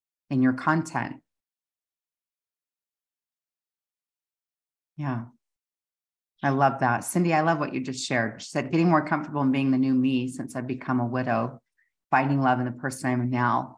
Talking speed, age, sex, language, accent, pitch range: 160 wpm, 40-59, female, English, American, 125-150 Hz